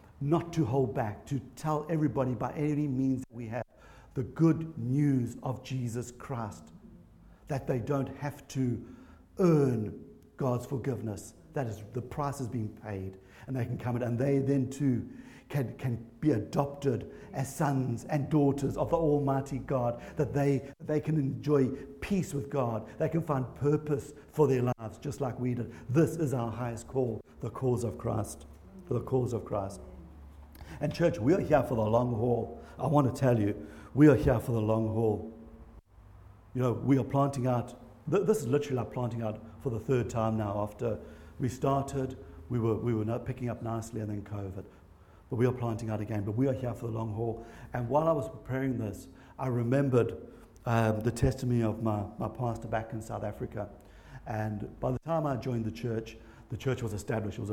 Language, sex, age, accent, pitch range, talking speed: English, male, 60-79, British, 110-135 Hz, 195 wpm